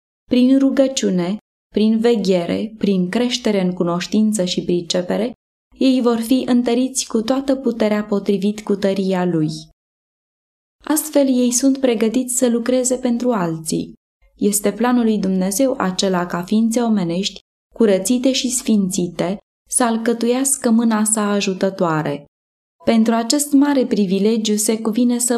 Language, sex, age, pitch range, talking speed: Romanian, female, 20-39, 195-240 Hz, 125 wpm